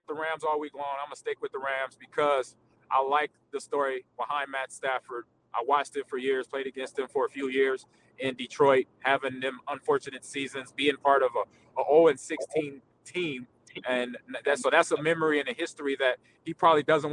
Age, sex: 30-49, male